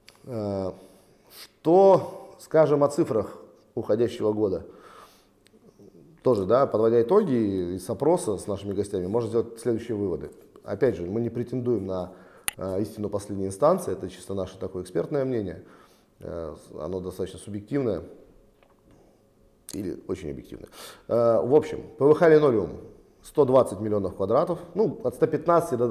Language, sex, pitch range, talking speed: Russian, male, 100-135 Hz, 115 wpm